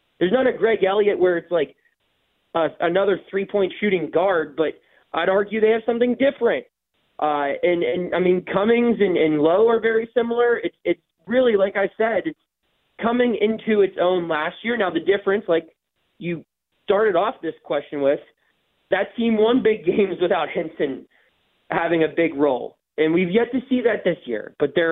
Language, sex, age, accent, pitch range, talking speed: English, male, 20-39, American, 170-230 Hz, 185 wpm